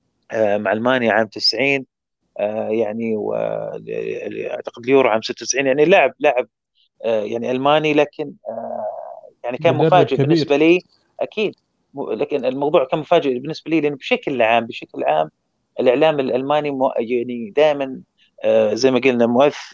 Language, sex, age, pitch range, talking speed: Arabic, male, 30-49, 120-145 Hz, 125 wpm